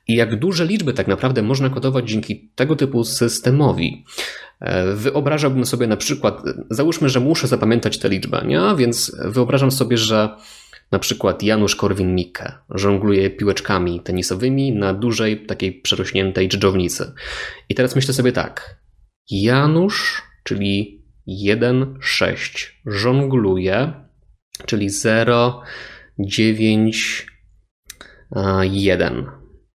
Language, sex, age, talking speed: Polish, male, 20-39, 105 wpm